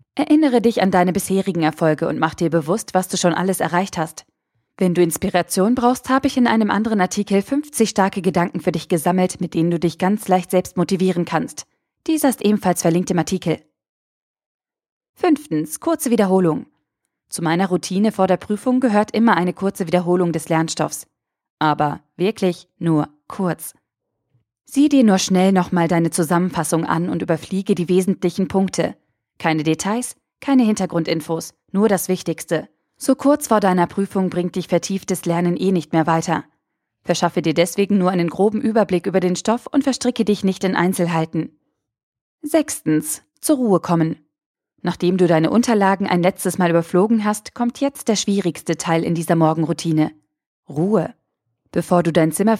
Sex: female